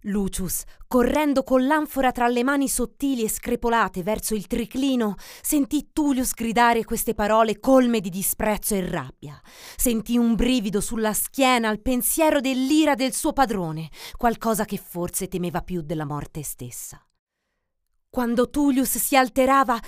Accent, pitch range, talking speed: native, 185-260 Hz, 140 wpm